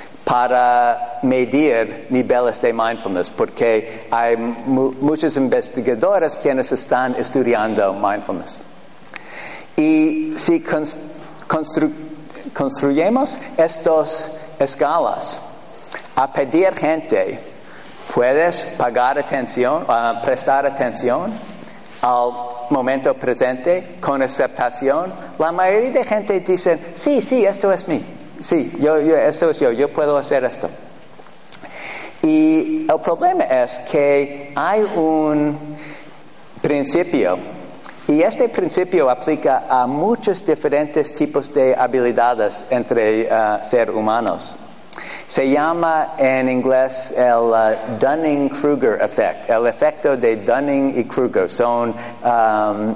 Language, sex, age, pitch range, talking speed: Spanish, male, 50-69, 120-165 Hz, 105 wpm